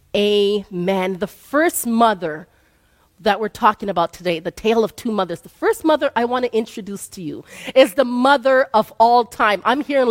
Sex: female